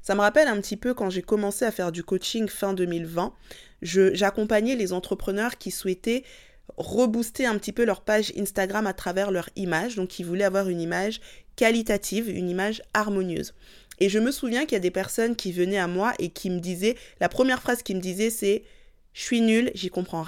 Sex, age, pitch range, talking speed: female, 20-39, 190-230 Hz, 210 wpm